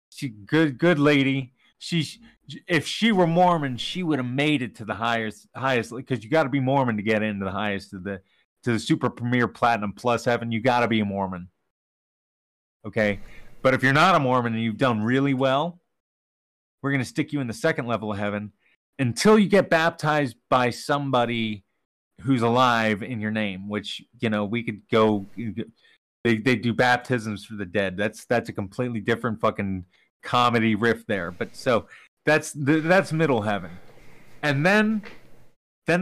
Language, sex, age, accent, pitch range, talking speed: English, male, 30-49, American, 105-145 Hz, 180 wpm